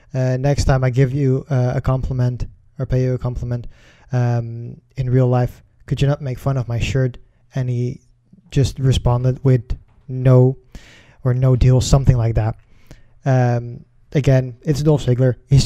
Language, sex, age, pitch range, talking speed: English, male, 20-39, 120-135 Hz, 170 wpm